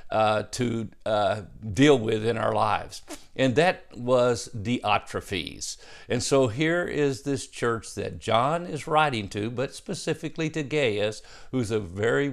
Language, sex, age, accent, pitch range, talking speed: English, male, 50-69, American, 110-140 Hz, 145 wpm